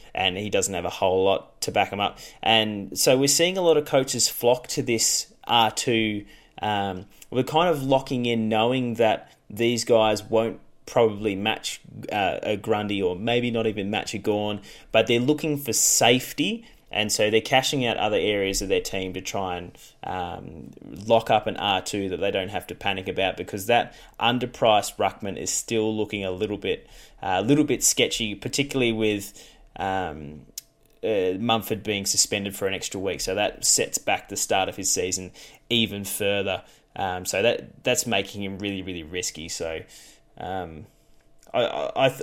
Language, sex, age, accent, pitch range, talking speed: English, male, 20-39, Australian, 100-125 Hz, 175 wpm